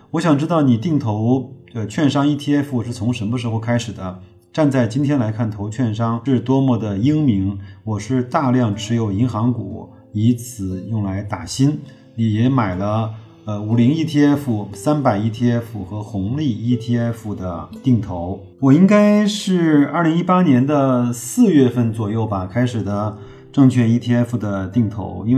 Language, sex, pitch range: Chinese, male, 105-130 Hz